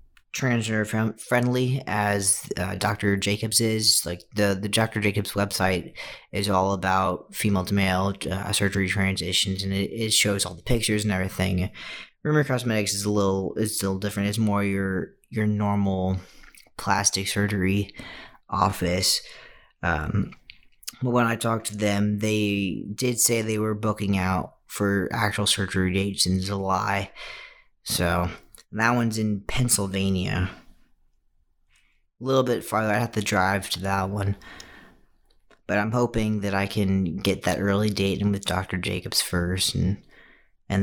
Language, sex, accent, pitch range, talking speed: English, male, American, 95-110 Hz, 150 wpm